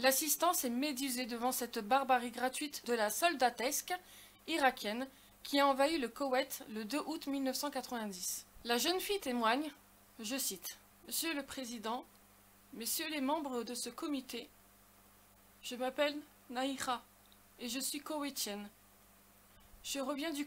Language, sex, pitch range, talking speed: French, female, 240-295 Hz, 130 wpm